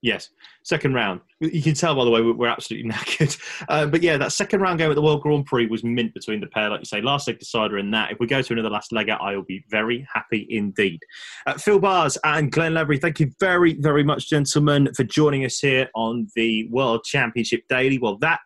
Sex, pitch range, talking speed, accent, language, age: male, 115-150 Hz, 235 wpm, British, English, 20-39